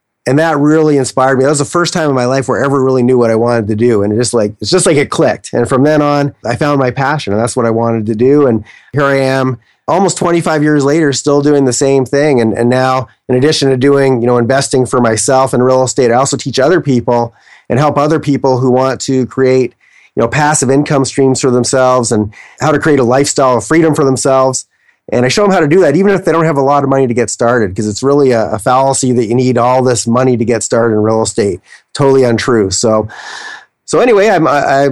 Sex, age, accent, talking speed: male, 30-49, American, 260 wpm